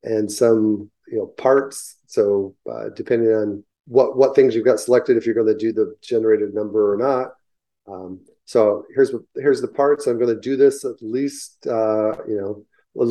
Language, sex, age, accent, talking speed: English, male, 40-59, American, 185 wpm